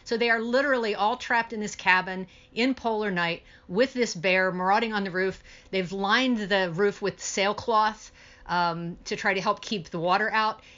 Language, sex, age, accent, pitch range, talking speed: English, female, 50-69, American, 185-225 Hz, 185 wpm